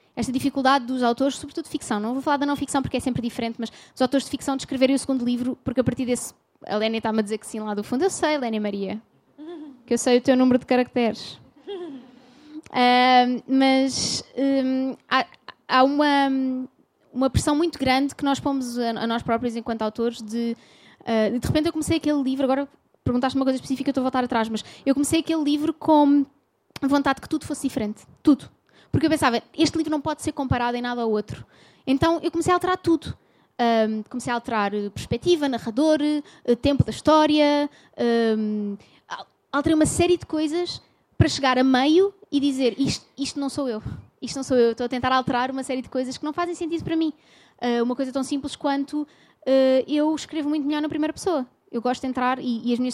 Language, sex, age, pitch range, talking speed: Portuguese, female, 20-39, 240-295 Hz, 210 wpm